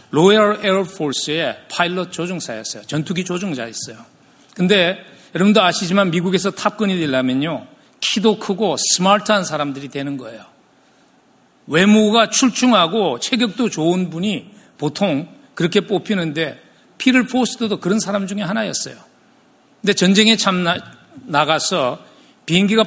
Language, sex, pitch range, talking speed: English, male, 150-210 Hz, 95 wpm